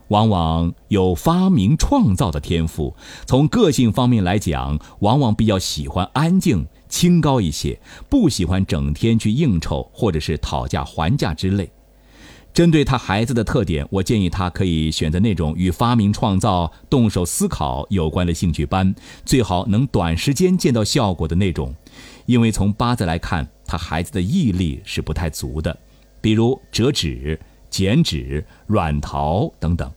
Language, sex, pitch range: Chinese, male, 85-125 Hz